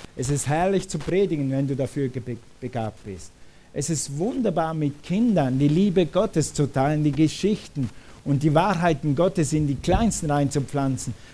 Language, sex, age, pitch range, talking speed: German, male, 50-69, 135-170 Hz, 160 wpm